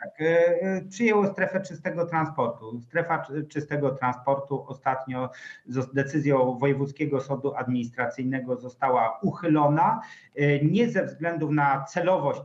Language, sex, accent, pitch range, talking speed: Polish, male, native, 130-155 Hz, 100 wpm